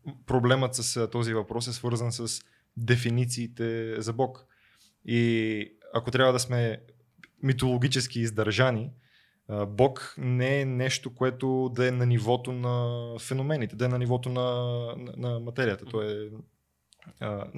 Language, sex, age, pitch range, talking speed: Bulgarian, male, 20-39, 115-130 Hz, 135 wpm